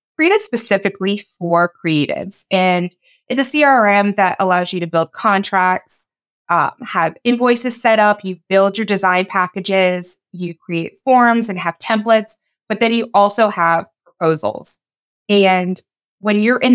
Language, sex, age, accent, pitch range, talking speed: English, female, 20-39, American, 180-220 Hz, 145 wpm